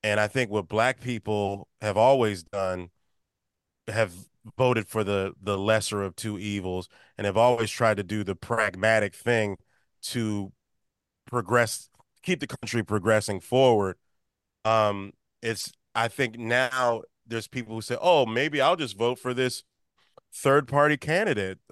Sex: male